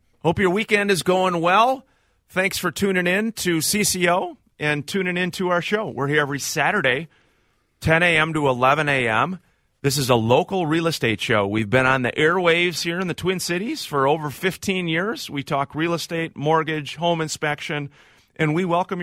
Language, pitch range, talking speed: English, 110-155 Hz, 185 wpm